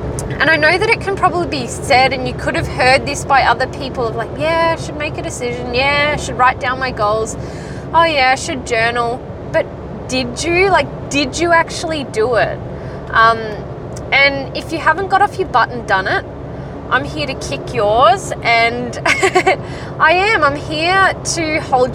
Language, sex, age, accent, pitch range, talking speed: English, female, 20-39, Australian, 225-320 Hz, 195 wpm